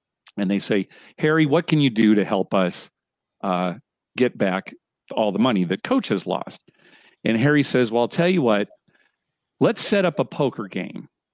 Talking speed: 185 wpm